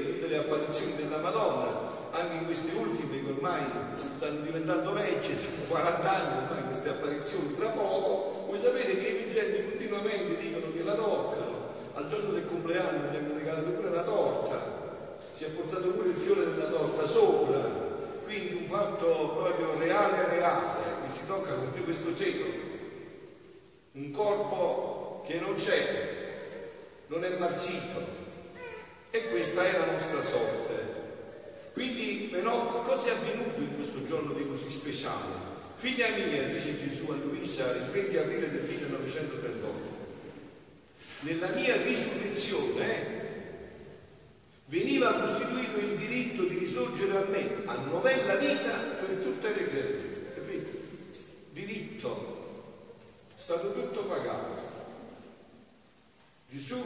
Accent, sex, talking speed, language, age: native, male, 130 wpm, Italian, 50-69